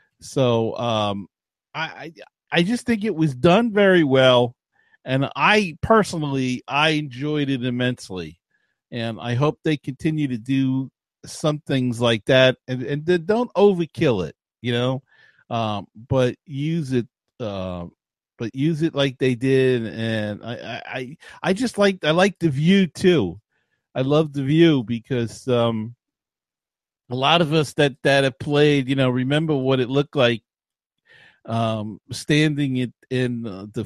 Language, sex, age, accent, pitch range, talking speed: English, male, 40-59, American, 120-155 Hz, 150 wpm